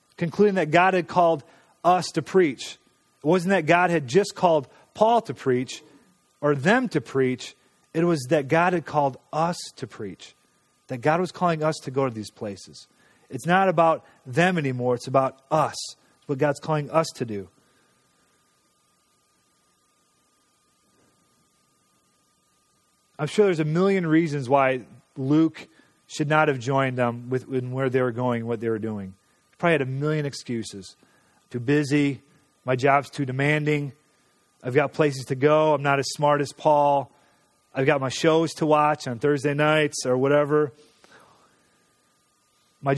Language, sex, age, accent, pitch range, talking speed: English, male, 40-59, American, 130-160 Hz, 160 wpm